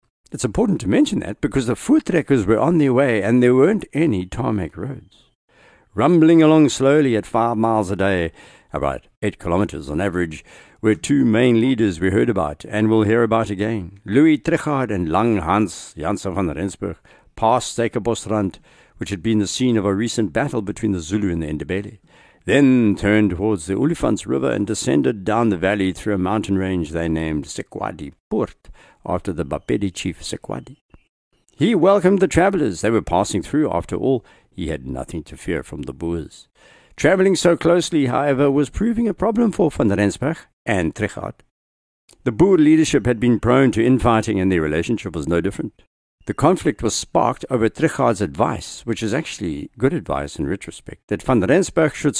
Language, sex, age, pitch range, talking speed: English, male, 60-79, 95-140 Hz, 180 wpm